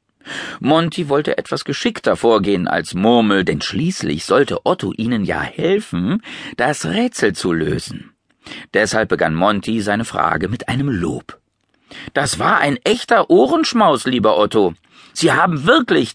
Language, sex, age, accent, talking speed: German, male, 50-69, German, 135 wpm